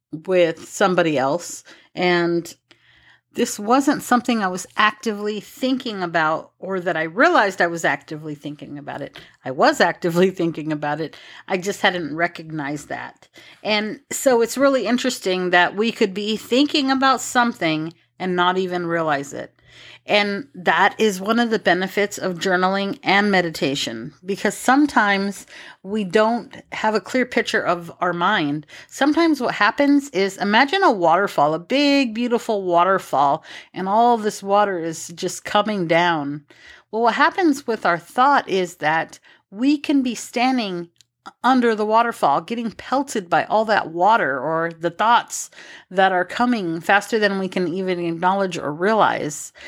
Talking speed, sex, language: 155 wpm, female, English